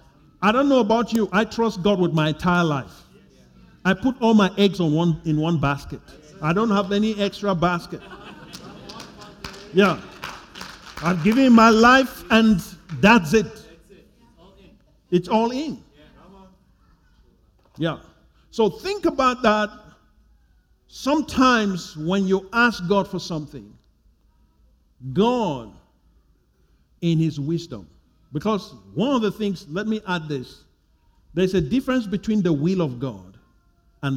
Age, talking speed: 50-69, 130 wpm